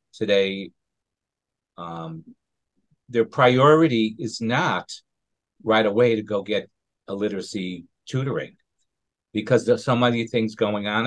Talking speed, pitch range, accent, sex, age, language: 115 wpm, 105-130 Hz, American, male, 50-69, English